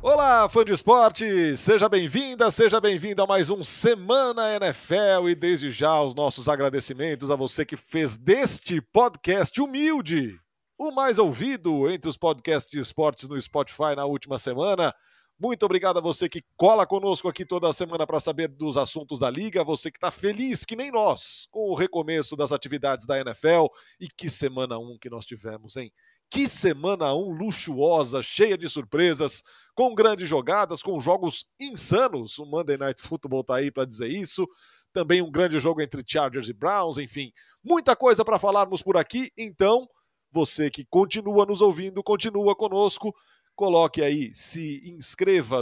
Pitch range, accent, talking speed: 145-210 Hz, Brazilian, 165 wpm